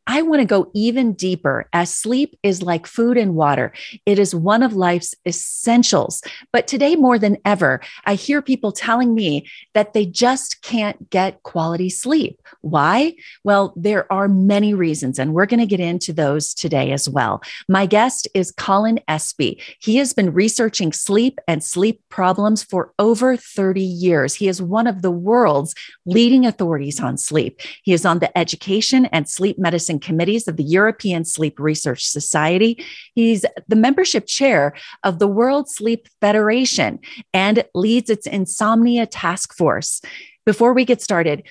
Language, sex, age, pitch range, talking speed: English, female, 30-49, 170-225 Hz, 165 wpm